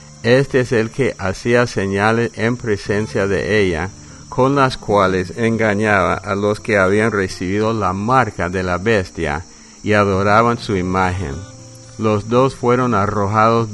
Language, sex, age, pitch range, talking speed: English, male, 50-69, 95-115 Hz, 140 wpm